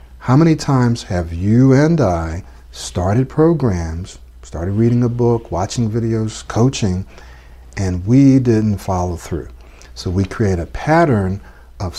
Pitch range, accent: 80-115 Hz, American